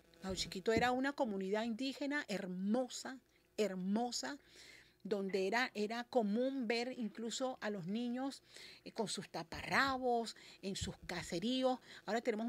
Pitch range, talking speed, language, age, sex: 200-255 Hz, 120 wpm, Spanish, 40-59, female